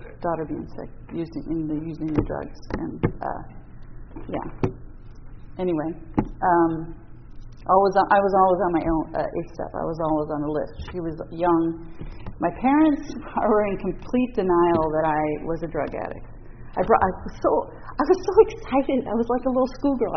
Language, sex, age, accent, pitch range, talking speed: English, female, 40-59, American, 165-255 Hz, 180 wpm